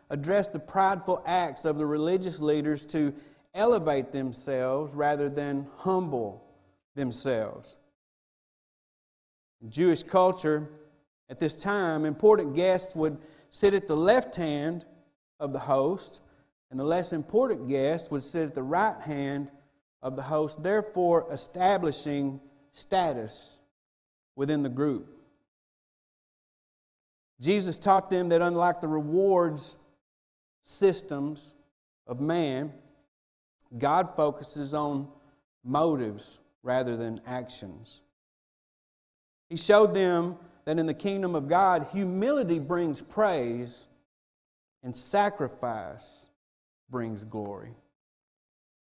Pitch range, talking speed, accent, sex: 130-175 Hz, 105 wpm, American, male